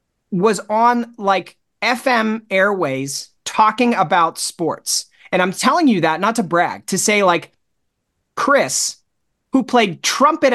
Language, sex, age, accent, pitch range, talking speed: English, male, 30-49, American, 160-235 Hz, 130 wpm